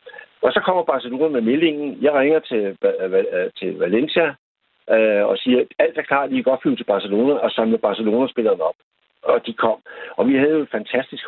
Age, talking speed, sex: 60-79, 175 wpm, male